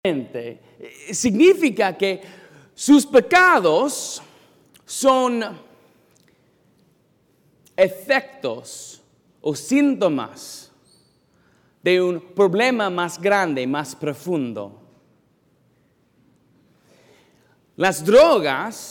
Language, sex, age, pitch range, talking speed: English, male, 40-59, 175-255 Hz, 55 wpm